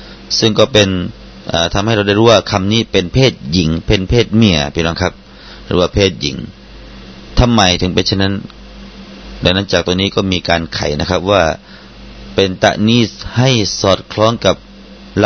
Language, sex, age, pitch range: Thai, male, 30-49, 85-120 Hz